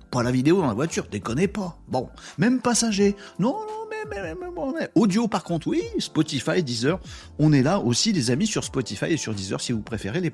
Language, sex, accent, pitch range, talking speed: French, male, French, 130-195 Hz, 220 wpm